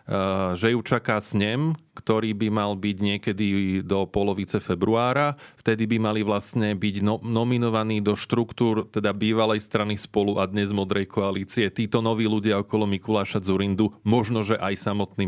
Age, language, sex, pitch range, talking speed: 30-49, Slovak, male, 100-115 Hz, 155 wpm